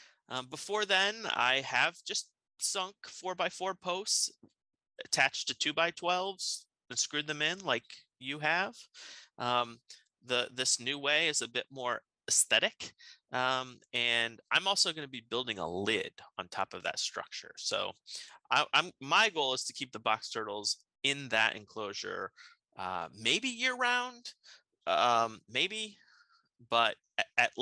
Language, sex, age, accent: English, male, 30-49, American